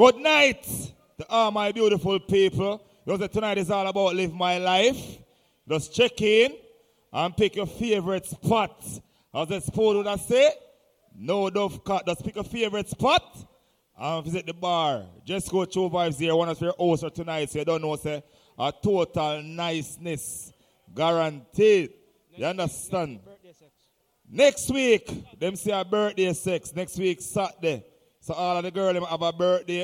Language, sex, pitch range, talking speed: English, male, 165-210 Hz, 160 wpm